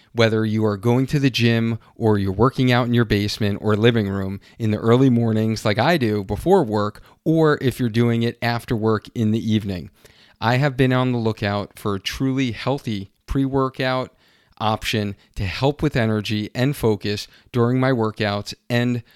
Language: English